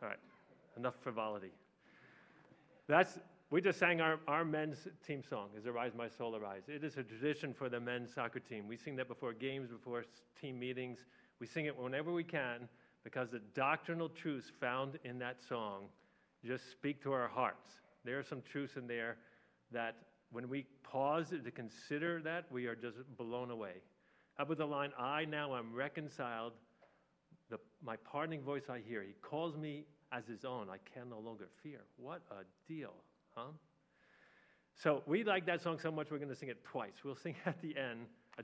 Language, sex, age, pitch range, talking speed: English, male, 40-59, 120-145 Hz, 185 wpm